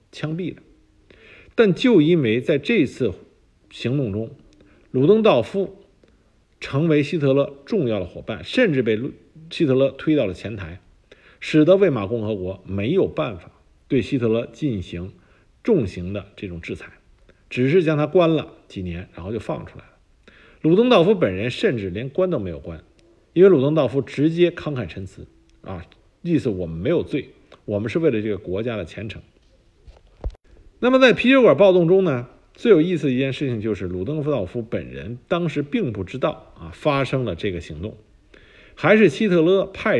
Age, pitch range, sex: 50-69, 100-165 Hz, male